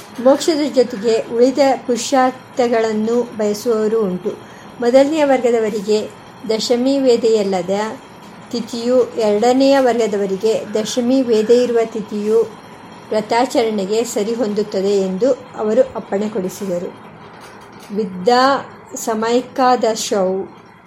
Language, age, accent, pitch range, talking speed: Kannada, 50-69, native, 215-255 Hz, 65 wpm